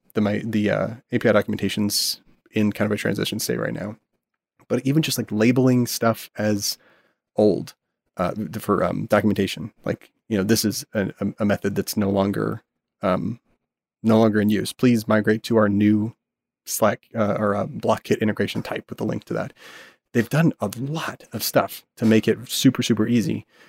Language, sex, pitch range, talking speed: English, male, 105-115 Hz, 185 wpm